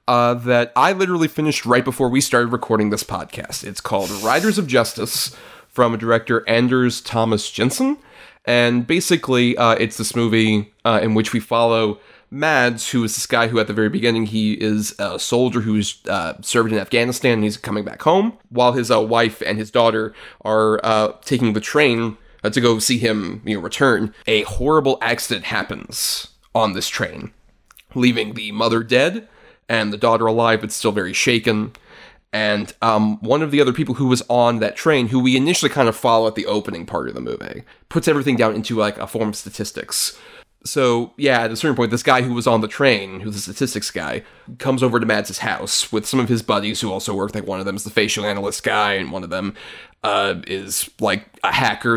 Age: 30-49